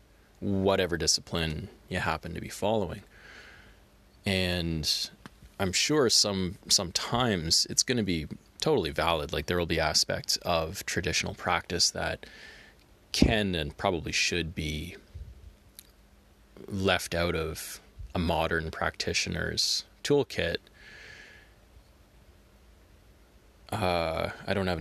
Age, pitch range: 20-39, 75-95 Hz